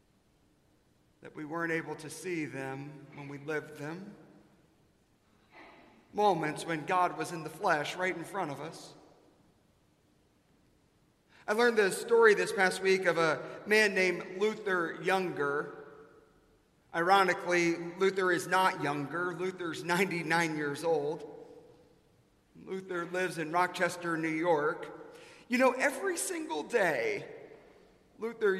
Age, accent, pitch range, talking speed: 40-59, American, 165-205 Hz, 120 wpm